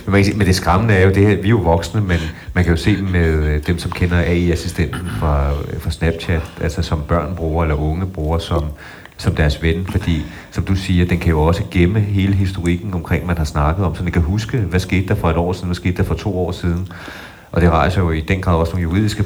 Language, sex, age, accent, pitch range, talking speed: Danish, male, 30-49, native, 80-90 Hz, 240 wpm